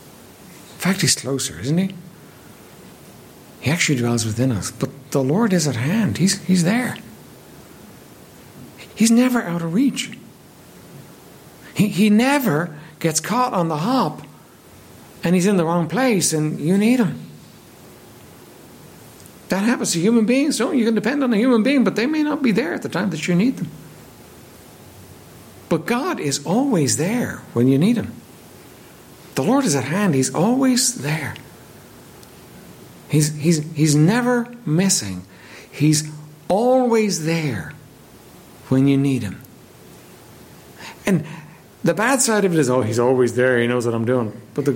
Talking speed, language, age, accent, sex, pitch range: 155 wpm, English, 60-79, American, male, 140-225 Hz